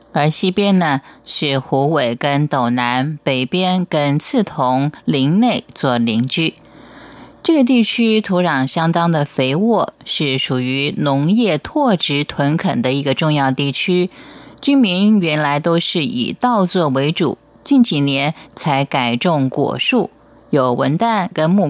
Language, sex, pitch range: Chinese, female, 140-185 Hz